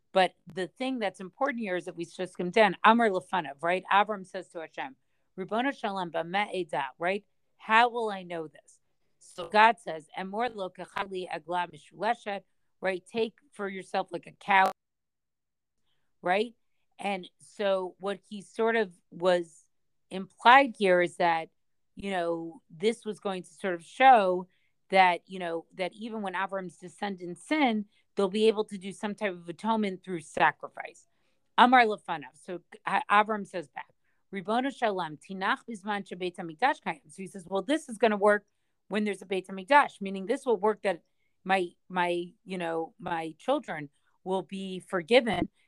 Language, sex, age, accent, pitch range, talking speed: English, female, 40-59, American, 175-215 Hz, 160 wpm